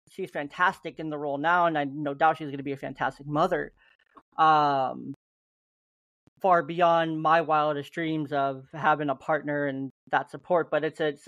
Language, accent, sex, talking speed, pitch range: English, American, male, 175 wpm, 150-180 Hz